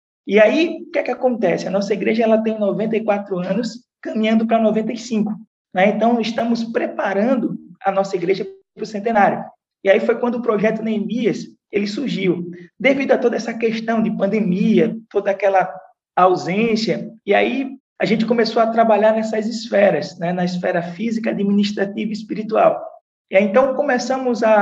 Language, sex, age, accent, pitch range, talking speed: Portuguese, male, 20-39, Brazilian, 200-245 Hz, 155 wpm